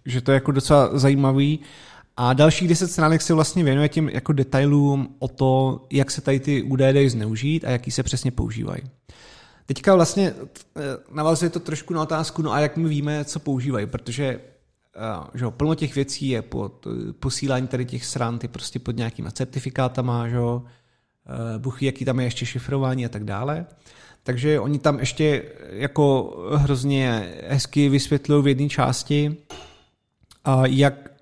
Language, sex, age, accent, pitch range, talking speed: Czech, male, 30-49, native, 125-145 Hz, 160 wpm